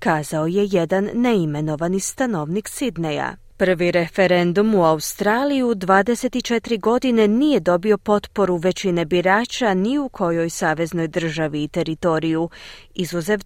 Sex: female